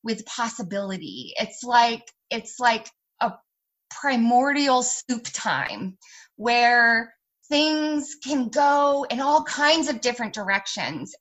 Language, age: English, 20-39